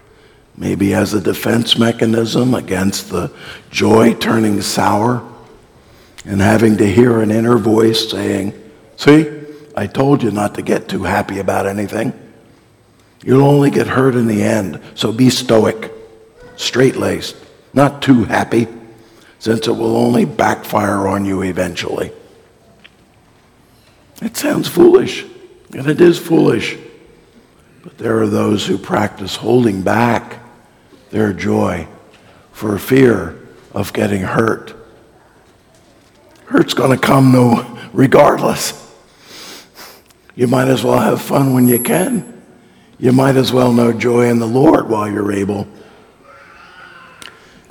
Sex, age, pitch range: male, 60-79, 105-125 Hz